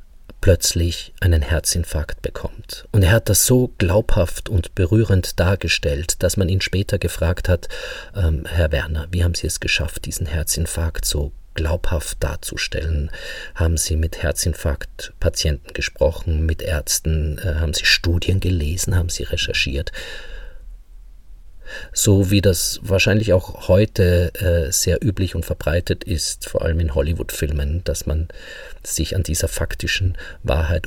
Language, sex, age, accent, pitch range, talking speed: German, male, 50-69, German, 80-95 Hz, 135 wpm